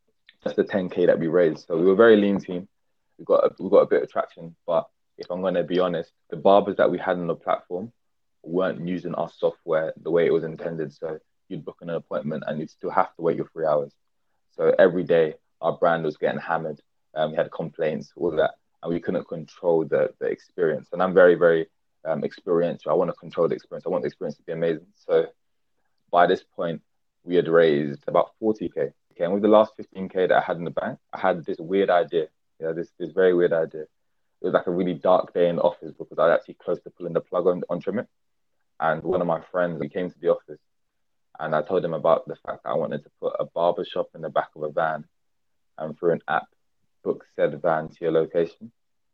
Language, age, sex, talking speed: English, 20-39, male, 235 wpm